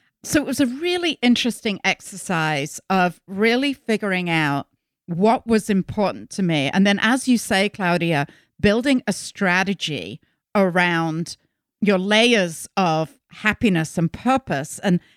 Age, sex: 50-69, female